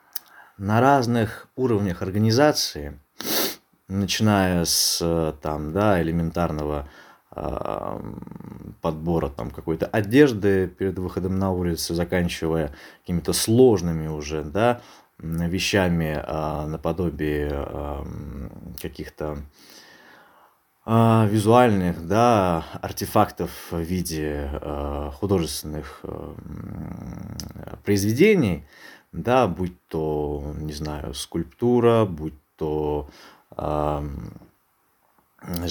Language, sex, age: Russian, male, 20-39